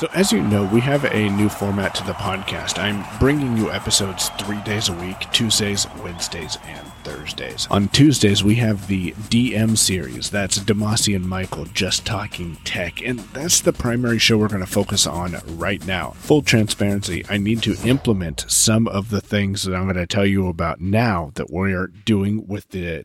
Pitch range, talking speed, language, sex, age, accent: 95-120 Hz, 195 wpm, English, male, 40-59, American